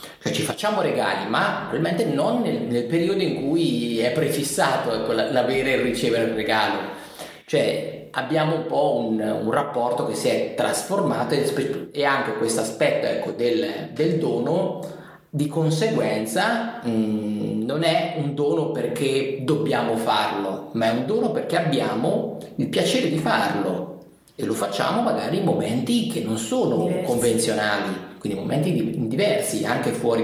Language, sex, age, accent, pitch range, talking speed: Italian, male, 30-49, native, 110-165 Hz, 145 wpm